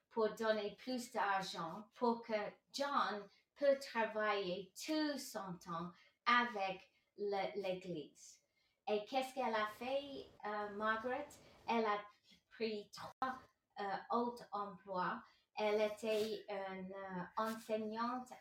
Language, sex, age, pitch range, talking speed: English, female, 30-49, 200-240 Hz, 110 wpm